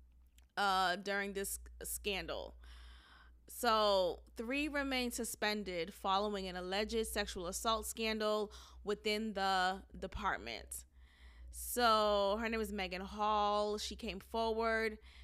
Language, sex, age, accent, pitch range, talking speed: English, female, 20-39, American, 185-225 Hz, 100 wpm